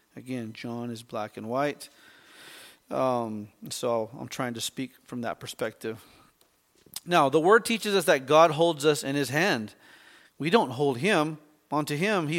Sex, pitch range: male, 130-155 Hz